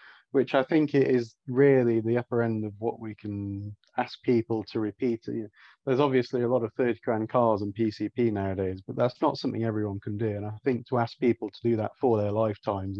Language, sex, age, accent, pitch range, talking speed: English, male, 30-49, British, 110-125 Hz, 210 wpm